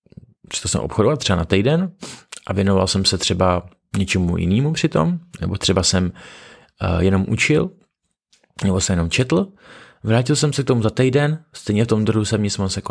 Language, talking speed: Czech, 185 wpm